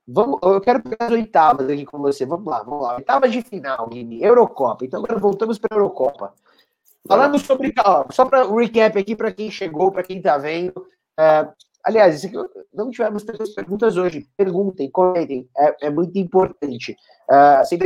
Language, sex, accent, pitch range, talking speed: Portuguese, male, Brazilian, 165-210 Hz, 180 wpm